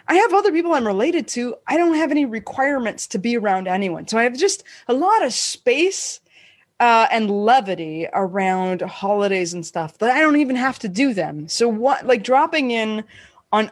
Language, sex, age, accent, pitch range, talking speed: English, female, 20-39, American, 195-275 Hz, 195 wpm